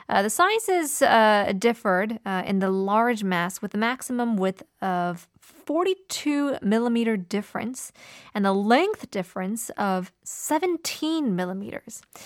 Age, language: 20-39, Korean